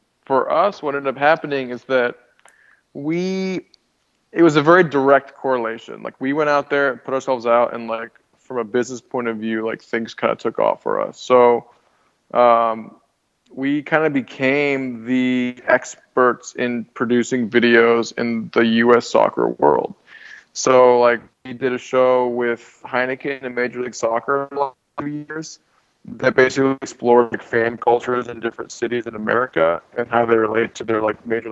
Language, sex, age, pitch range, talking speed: English, male, 20-39, 115-135 Hz, 175 wpm